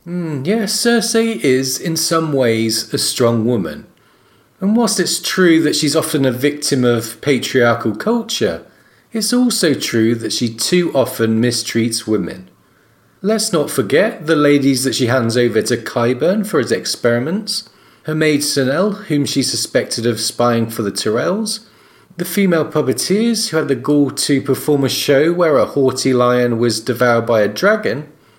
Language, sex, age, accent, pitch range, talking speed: English, male, 40-59, British, 120-185 Hz, 165 wpm